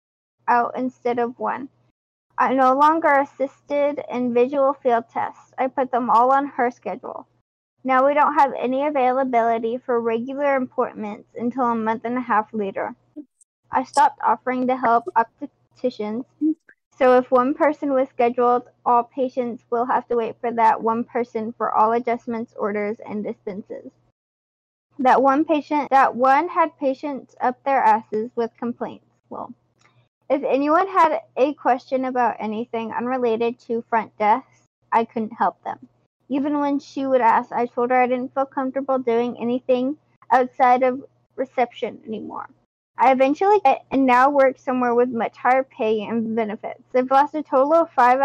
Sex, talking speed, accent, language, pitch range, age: female, 160 wpm, American, English, 230-275 Hz, 10-29